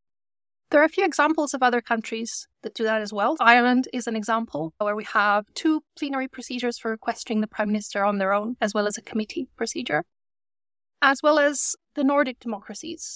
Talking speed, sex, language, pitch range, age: 195 wpm, female, English, 210-275 Hz, 20-39